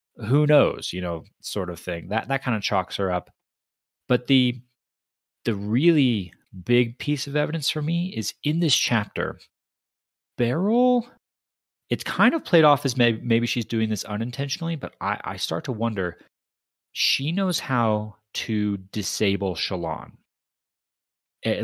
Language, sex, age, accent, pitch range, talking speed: English, male, 30-49, American, 100-130 Hz, 150 wpm